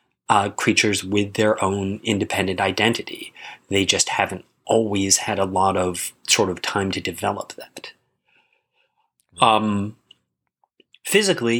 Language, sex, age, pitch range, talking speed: English, male, 30-49, 100-120 Hz, 115 wpm